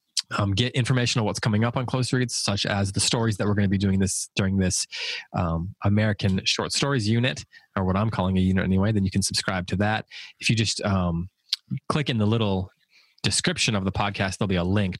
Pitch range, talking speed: 95-110 Hz, 230 wpm